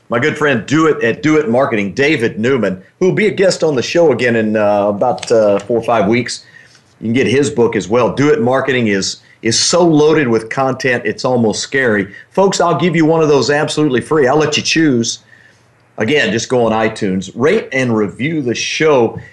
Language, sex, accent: English, male, American